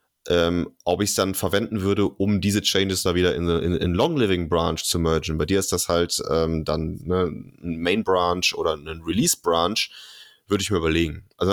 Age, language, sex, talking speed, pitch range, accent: 20-39, German, male, 180 wpm, 80-95 Hz, German